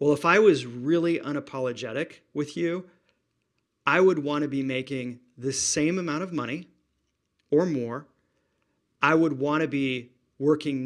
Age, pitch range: 40-59, 125-150 Hz